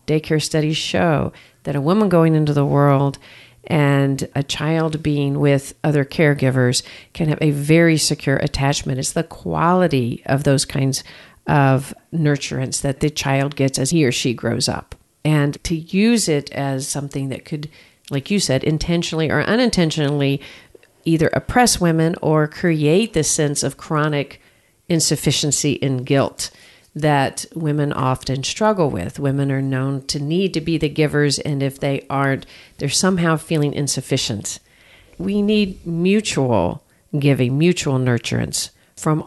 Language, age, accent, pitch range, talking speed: English, 50-69, American, 135-160 Hz, 145 wpm